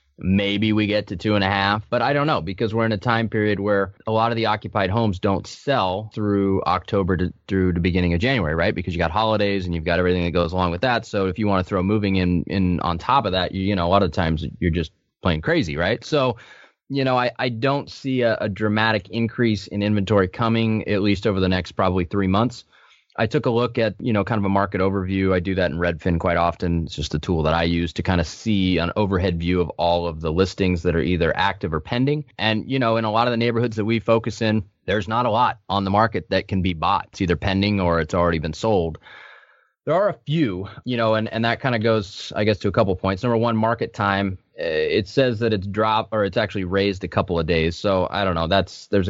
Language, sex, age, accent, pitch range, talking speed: English, male, 20-39, American, 90-110 Hz, 260 wpm